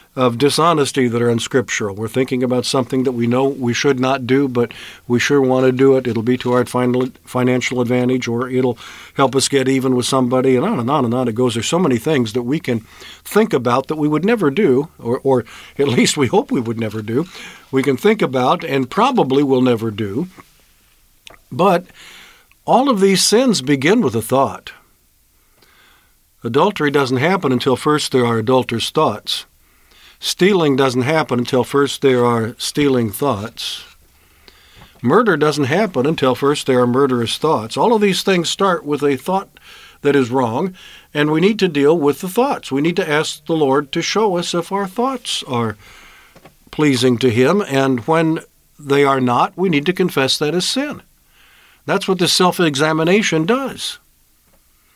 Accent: American